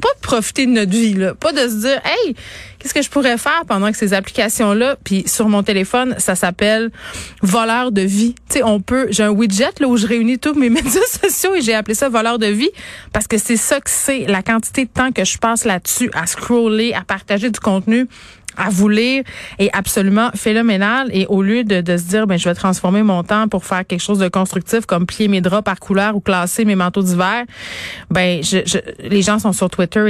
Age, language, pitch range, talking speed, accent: 30-49, French, 185-230 Hz, 225 wpm, Canadian